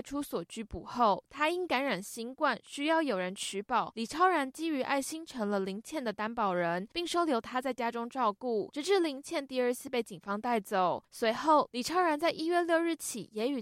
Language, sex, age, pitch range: Chinese, female, 10-29, 220-300 Hz